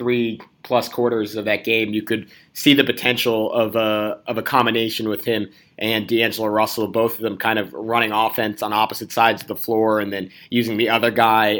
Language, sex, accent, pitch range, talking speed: English, male, American, 110-125 Hz, 205 wpm